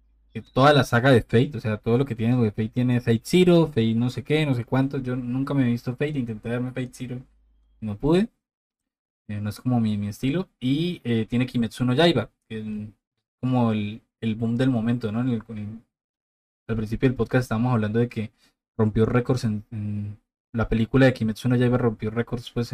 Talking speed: 200 wpm